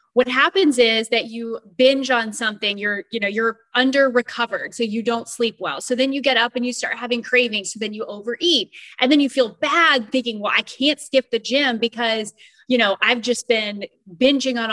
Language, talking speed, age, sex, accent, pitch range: English, 215 wpm, 20-39, female, American, 215-260 Hz